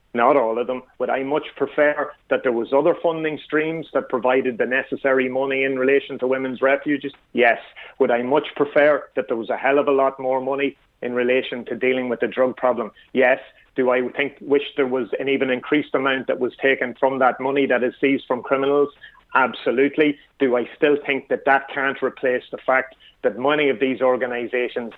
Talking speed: 205 wpm